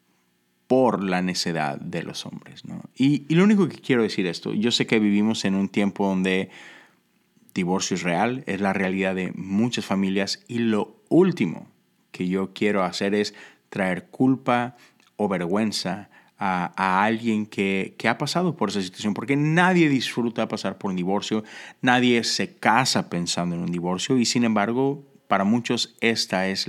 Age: 30-49